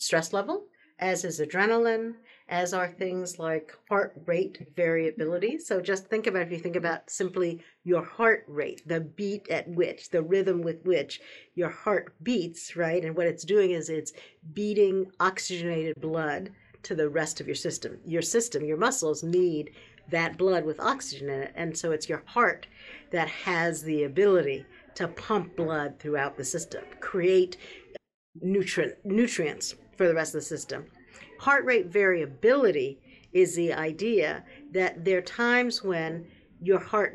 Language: English